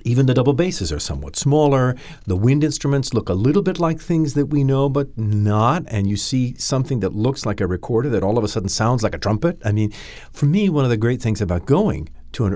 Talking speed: 250 wpm